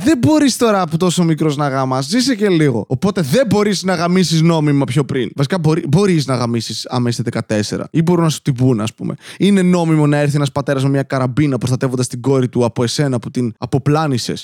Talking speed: 220 wpm